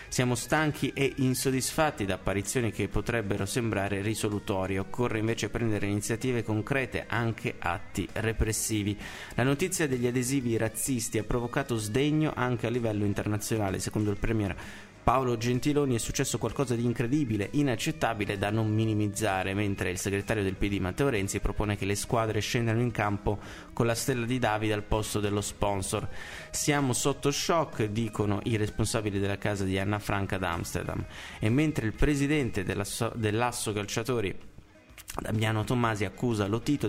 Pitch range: 100-125 Hz